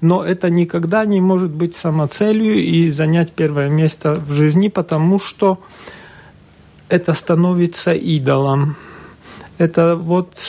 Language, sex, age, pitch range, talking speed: Russian, male, 40-59, 150-180 Hz, 115 wpm